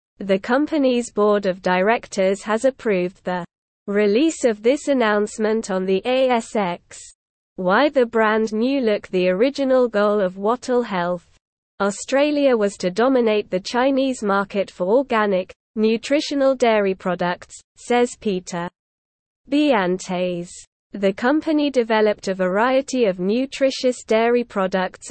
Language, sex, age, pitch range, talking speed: English, female, 20-39, 190-250 Hz, 120 wpm